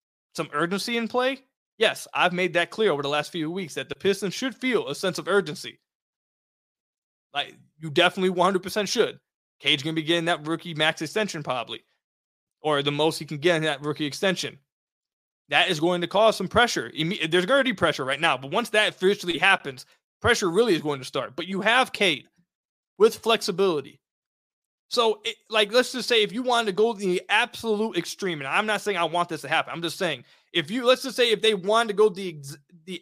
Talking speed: 210 wpm